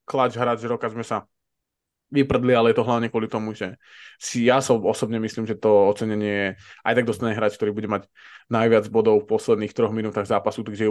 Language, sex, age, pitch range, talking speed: Slovak, male, 20-39, 110-135 Hz, 205 wpm